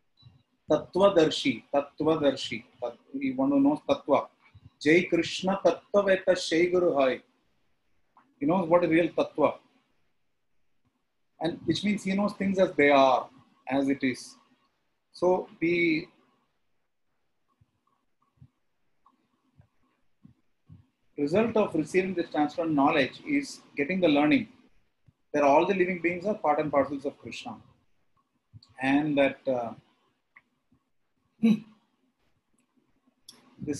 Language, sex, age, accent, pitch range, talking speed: English, male, 30-49, Indian, 140-195 Hz, 110 wpm